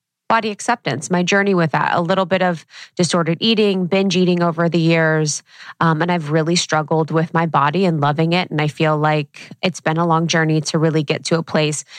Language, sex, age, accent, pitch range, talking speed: English, female, 20-39, American, 155-185 Hz, 215 wpm